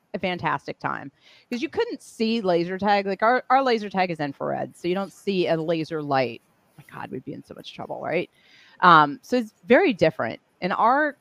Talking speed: 210 wpm